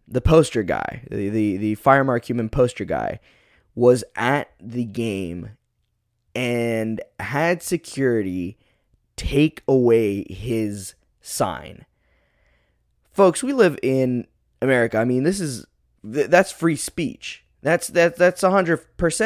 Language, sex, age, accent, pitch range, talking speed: English, male, 20-39, American, 110-165 Hz, 115 wpm